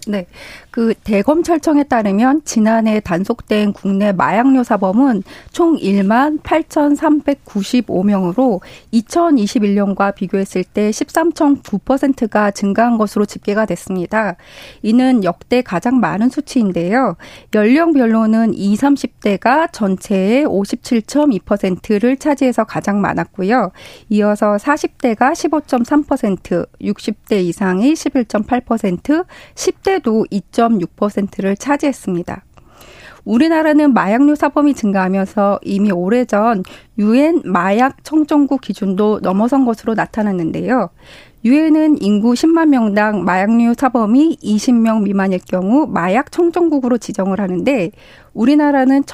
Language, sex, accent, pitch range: Korean, female, native, 200-275 Hz